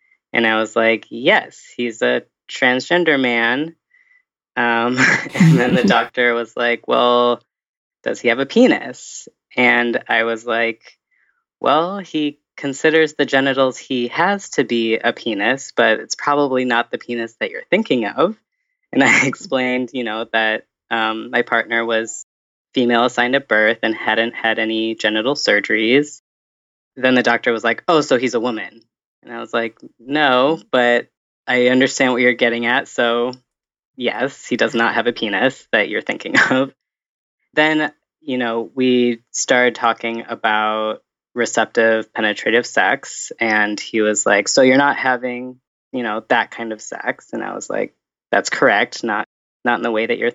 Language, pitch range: English, 115-130 Hz